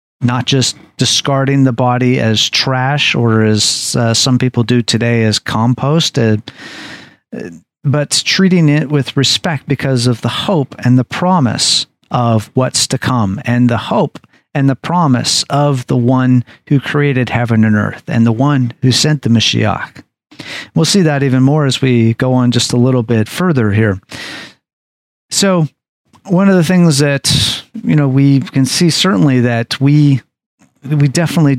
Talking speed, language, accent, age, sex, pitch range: 160 wpm, English, American, 40-59, male, 120-145 Hz